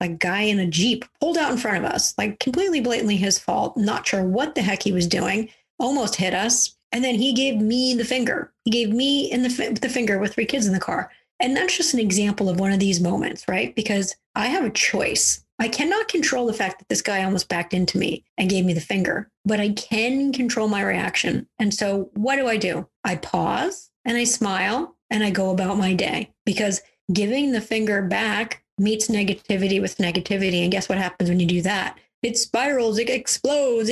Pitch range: 195-250 Hz